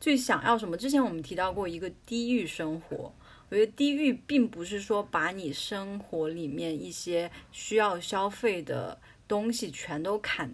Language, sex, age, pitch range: Chinese, female, 20-39, 160-235 Hz